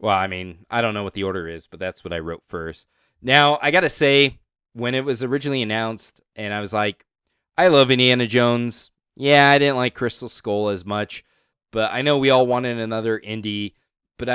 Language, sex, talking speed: English, male, 215 wpm